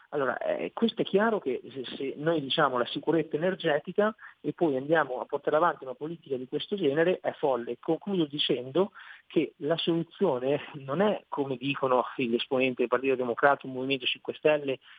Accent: native